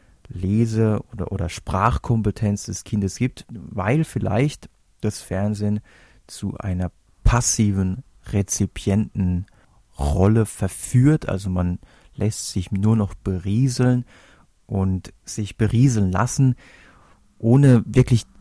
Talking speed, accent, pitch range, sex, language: 95 wpm, German, 95-115 Hz, male, German